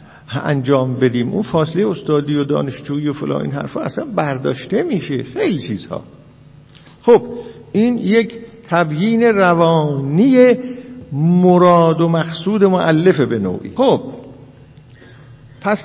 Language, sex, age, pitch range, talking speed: Persian, male, 50-69, 155-210 Hz, 115 wpm